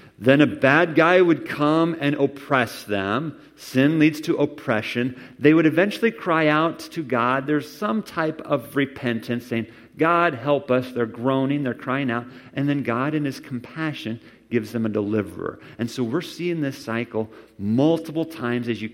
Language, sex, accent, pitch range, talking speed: English, male, American, 105-145 Hz, 170 wpm